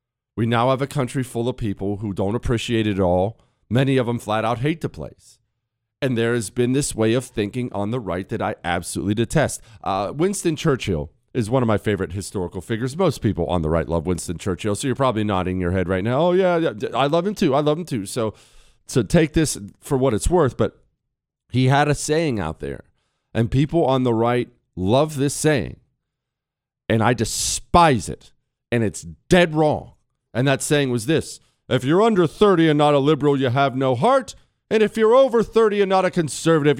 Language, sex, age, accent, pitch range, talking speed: English, male, 40-59, American, 110-170 Hz, 215 wpm